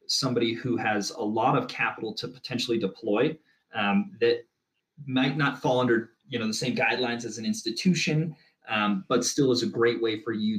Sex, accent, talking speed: male, American, 185 wpm